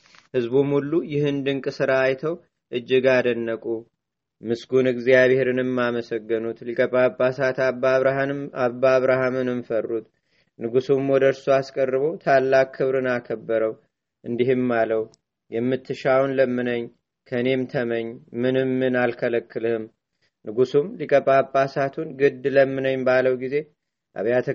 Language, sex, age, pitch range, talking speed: Amharic, male, 30-49, 120-135 Hz, 95 wpm